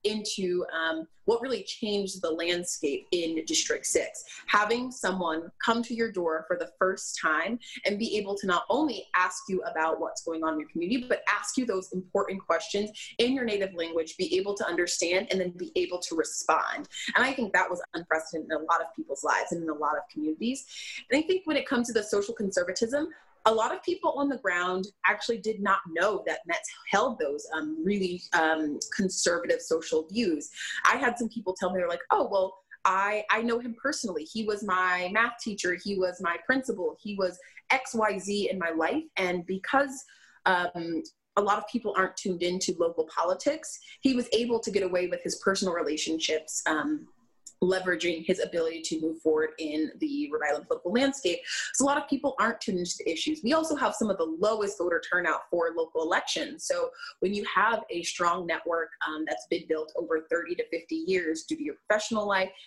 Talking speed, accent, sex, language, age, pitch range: 200 wpm, American, female, English, 20-39, 175-245 Hz